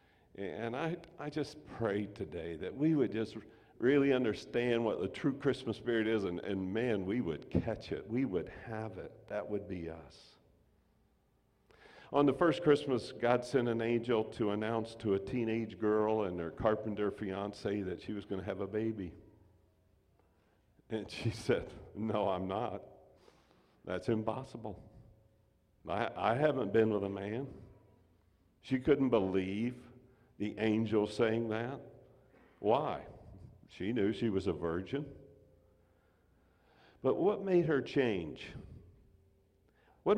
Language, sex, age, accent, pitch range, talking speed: English, male, 50-69, American, 100-130 Hz, 140 wpm